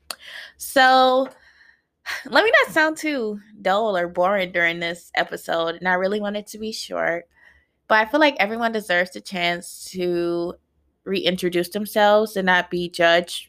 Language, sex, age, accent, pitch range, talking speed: English, female, 20-39, American, 170-200 Hz, 155 wpm